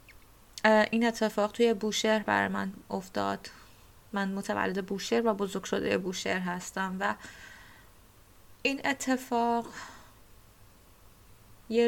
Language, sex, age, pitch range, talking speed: Persian, female, 20-39, 185-220 Hz, 95 wpm